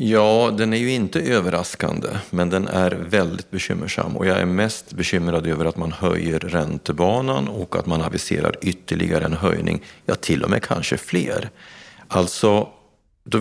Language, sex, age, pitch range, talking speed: Swedish, male, 40-59, 80-95 Hz, 160 wpm